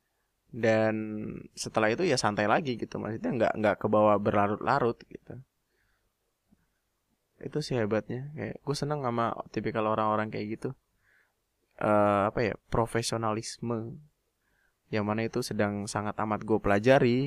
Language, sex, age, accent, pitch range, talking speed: Indonesian, male, 20-39, native, 105-125 Hz, 135 wpm